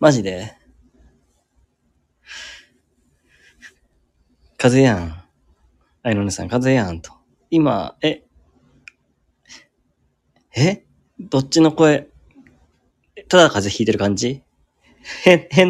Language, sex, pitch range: Japanese, male, 105-150 Hz